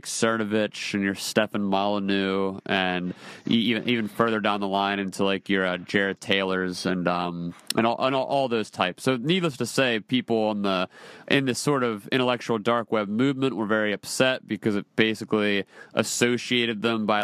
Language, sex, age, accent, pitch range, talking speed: English, male, 30-49, American, 100-125 Hz, 180 wpm